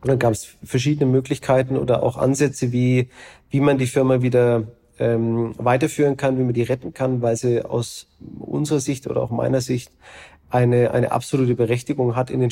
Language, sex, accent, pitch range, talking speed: German, male, German, 115-135 Hz, 185 wpm